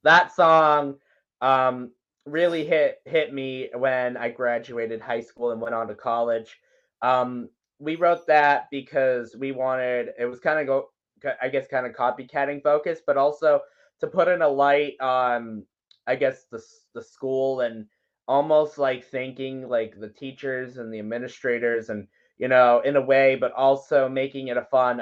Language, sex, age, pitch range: English, male, 20-39, 125-155 Hz